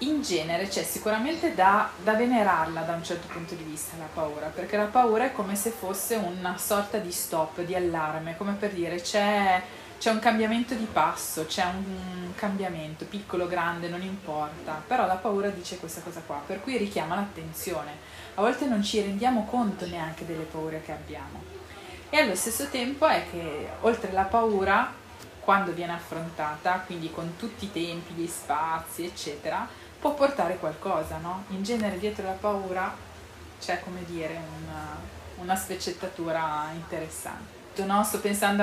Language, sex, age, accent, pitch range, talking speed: Italian, female, 20-39, native, 175-215 Hz, 165 wpm